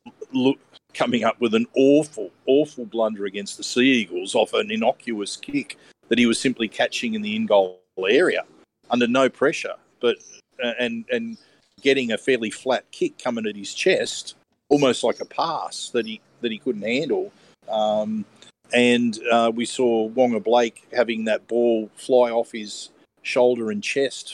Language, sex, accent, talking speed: English, male, Australian, 165 wpm